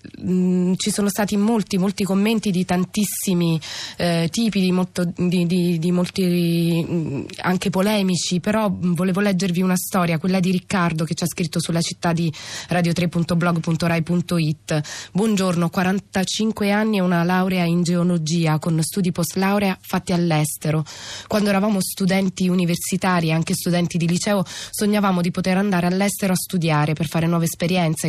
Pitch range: 165-190 Hz